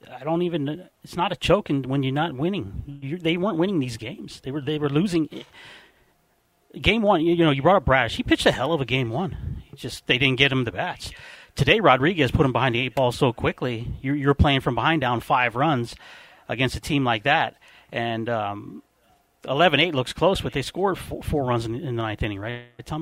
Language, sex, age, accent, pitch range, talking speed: English, male, 30-49, American, 125-160 Hz, 230 wpm